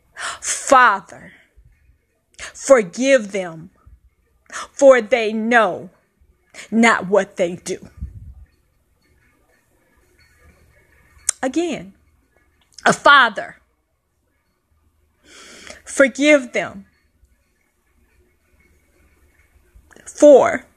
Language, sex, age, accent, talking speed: English, female, 20-39, American, 45 wpm